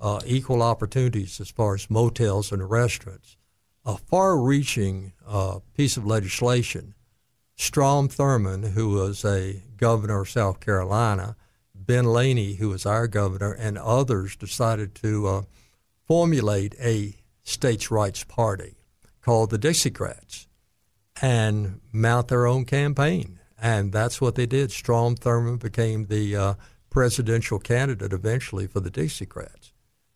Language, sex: English, male